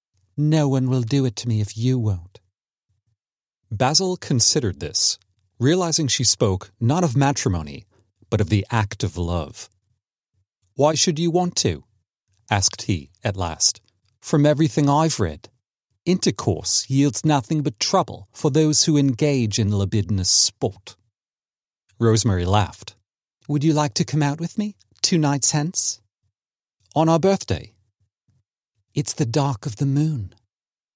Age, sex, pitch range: 40-59, male, 100-145 Hz